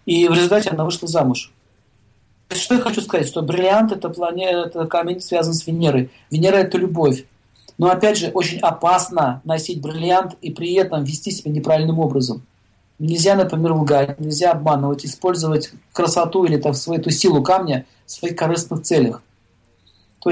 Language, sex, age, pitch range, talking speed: Russian, male, 40-59, 145-185 Hz, 170 wpm